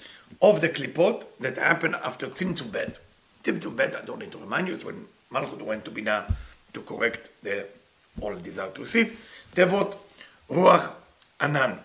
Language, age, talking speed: English, 50-69, 160 wpm